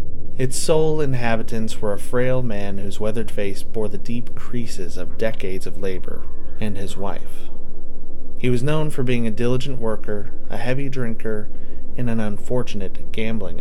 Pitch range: 90-125 Hz